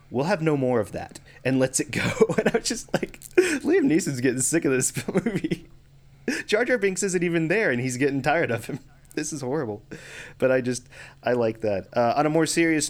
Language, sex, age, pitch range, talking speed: English, male, 30-49, 115-145 Hz, 225 wpm